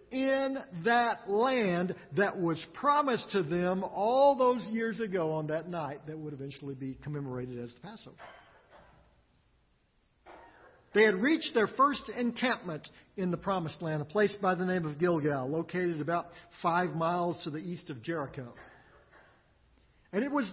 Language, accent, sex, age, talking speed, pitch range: English, American, male, 50-69, 150 wpm, 165-230 Hz